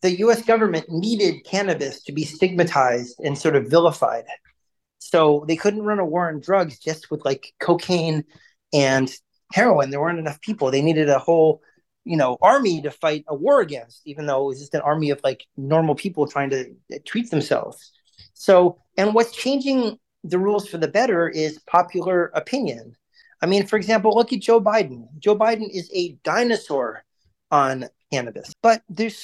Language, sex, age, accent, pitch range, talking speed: English, male, 30-49, American, 150-210 Hz, 175 wpm